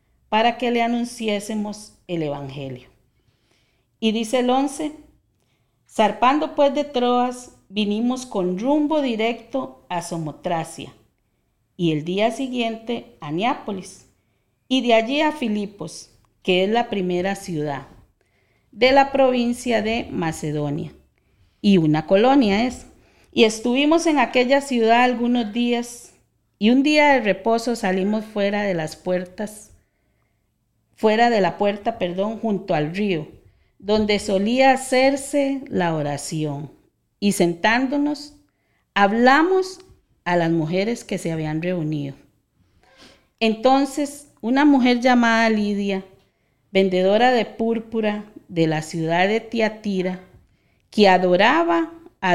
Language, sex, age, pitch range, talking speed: Spanish, female, 40-59, 170-245 Hz, 115 wpm